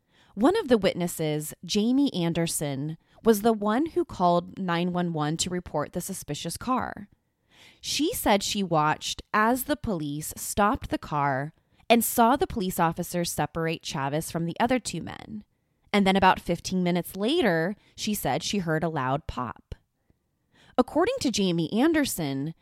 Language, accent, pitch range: English, American, 160-220 Hz